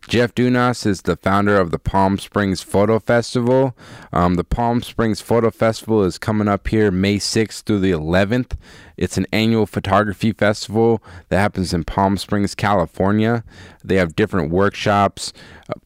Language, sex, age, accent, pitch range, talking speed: English, male, 20-39, American, 90-105 Hz, 160 wpm